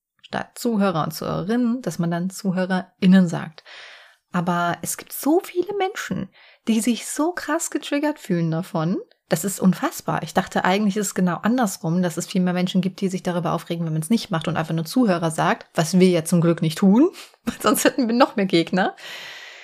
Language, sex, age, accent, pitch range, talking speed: German, female, 30-49, German, 185-275 Hz, 200 wpm